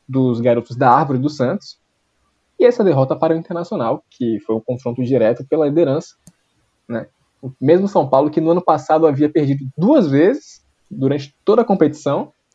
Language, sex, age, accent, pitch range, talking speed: Portuguese, male, 20-39, Brazilian, 130-200 Hz, 170 wpm